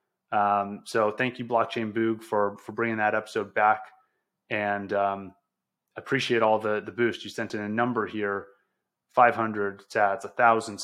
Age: 30-49